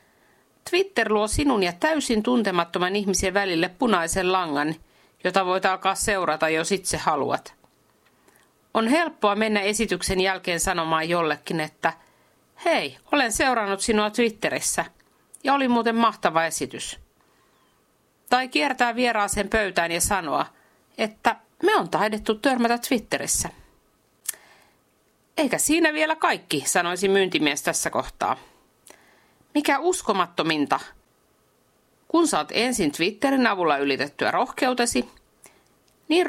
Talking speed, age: 105 wpm, 50-69